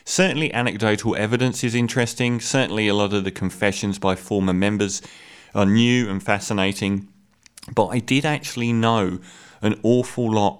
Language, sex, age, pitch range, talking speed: English, male, 30-49, 100-120 Hz, 145 wpm